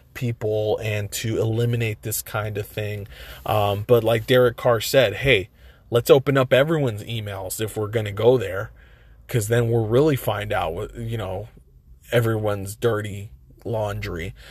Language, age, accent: English, 20-39, American